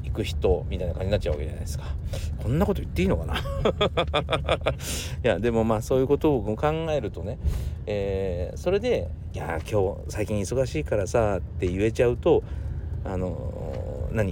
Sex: male